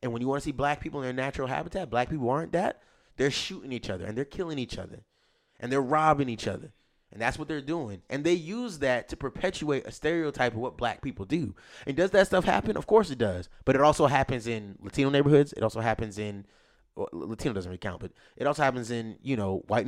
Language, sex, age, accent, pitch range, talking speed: English, male, 20-39, American, 110-150 Hz, 245 wpm